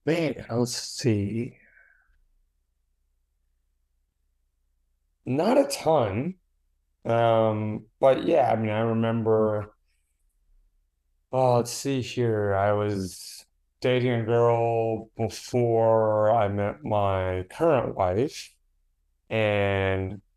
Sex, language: male, English